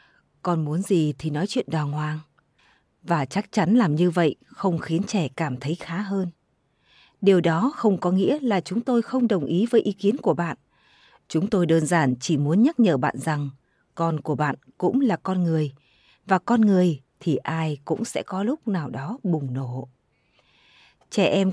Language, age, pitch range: Vietnamese, 20-39, 160-200 Hz